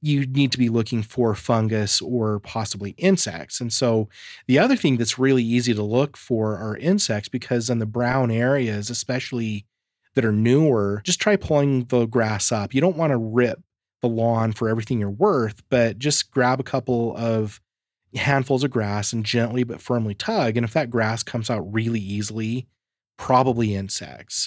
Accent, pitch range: American, 110-130 Hz